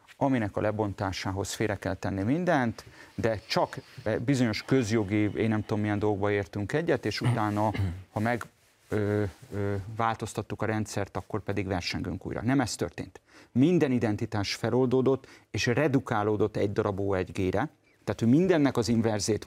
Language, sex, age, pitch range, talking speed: Hungarian, male, 40-59, 105-125 Hz, 140 wpm